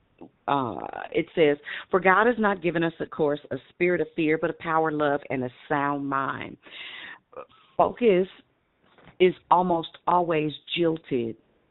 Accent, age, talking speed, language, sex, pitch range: American, 40-59, 145 wpm, English, female, 135-165 Hz